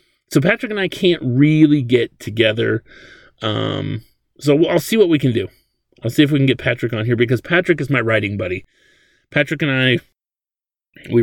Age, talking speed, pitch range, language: 30-49, 190 wpm, 115-150 Hz, English